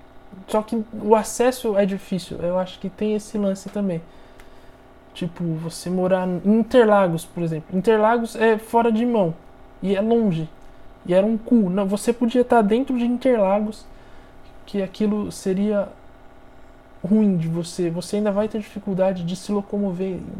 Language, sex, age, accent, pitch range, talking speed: Portuguese, male, 20-39, Brazilian, 165-215 Hz, 155 wpm